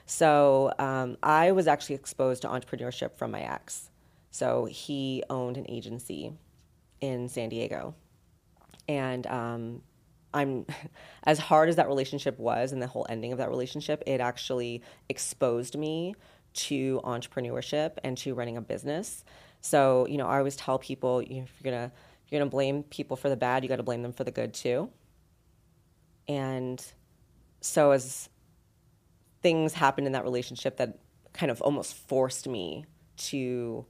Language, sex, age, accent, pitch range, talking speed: English, female, 30-49, American, 120-140 Hz, 160 wpm